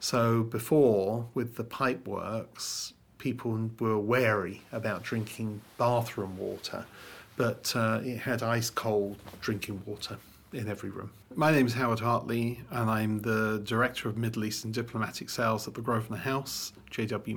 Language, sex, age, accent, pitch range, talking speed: English, male, 40-59, British, 110-125 Hz, 145 wpm